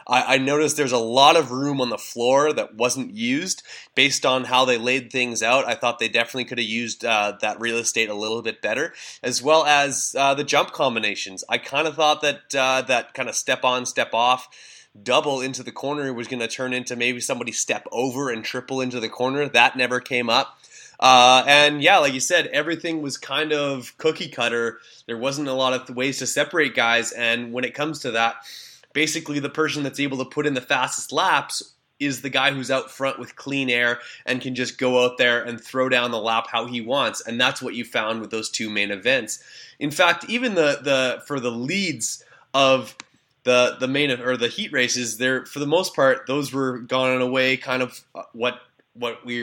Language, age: English, 20-39